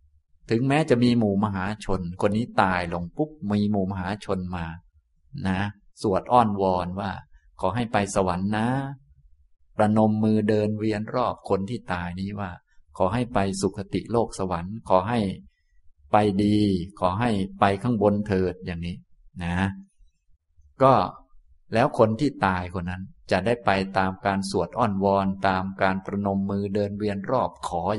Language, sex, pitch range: Thai, male, 90-115 Hz